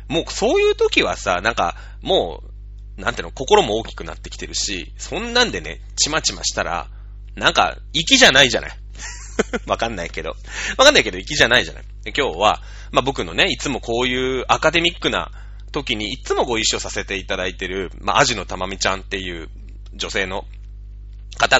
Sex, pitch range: male, 100-145 Hz